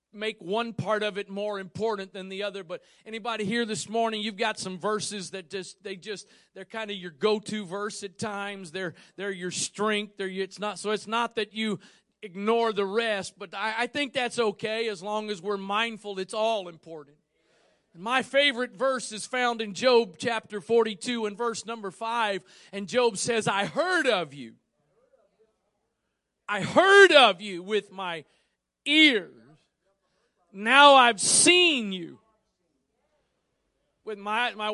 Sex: male